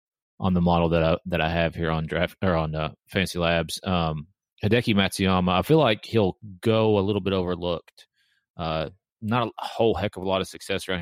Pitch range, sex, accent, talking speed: 85-95 Hz, male, American, 210 wpm